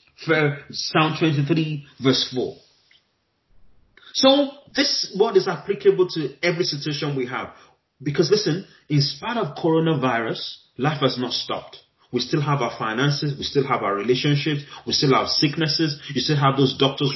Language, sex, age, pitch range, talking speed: English, male, 30-49, 140-190 Hz, 155 wpm